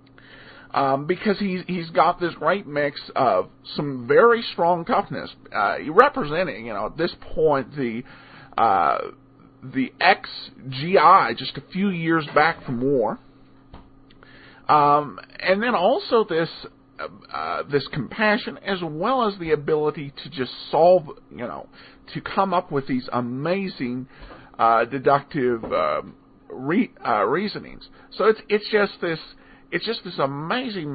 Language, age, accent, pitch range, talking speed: English, 50-69, American, 140-210 Hz, 135 wpm